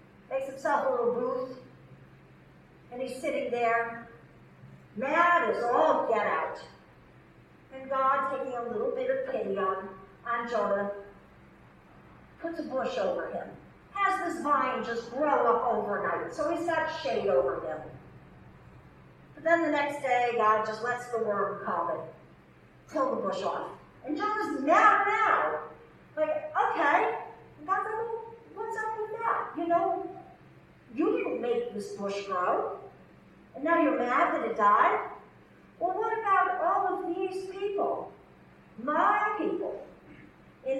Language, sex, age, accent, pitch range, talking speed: English, female, 50-69, American, 235-360 Hz, 140 wpm